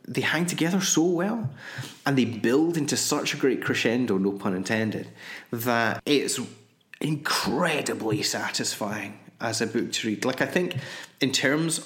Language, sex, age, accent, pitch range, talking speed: English, male, 30-49, British, 110-140 Hz, 150 wpm